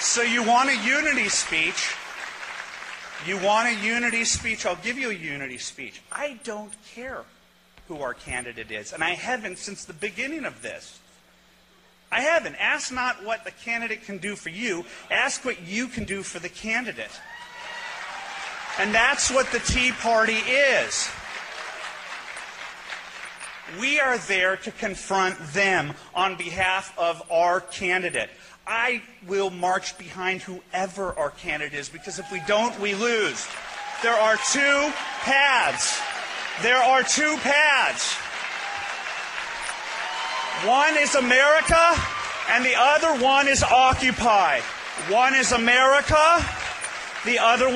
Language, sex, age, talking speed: English, male, 40-59, 130 wpm